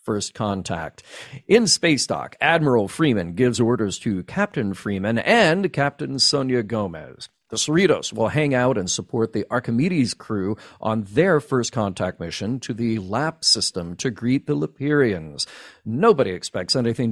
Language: English